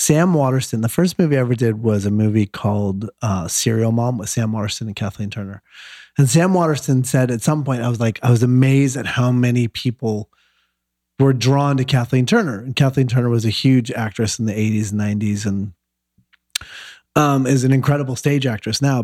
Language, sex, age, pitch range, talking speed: English, male, 30-49, 110-140 Hz, 200 wpm